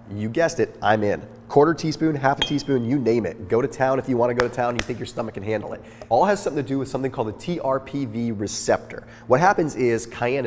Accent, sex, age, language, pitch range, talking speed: American, male, 30-49, English, 115-145 Hz, 250 wpm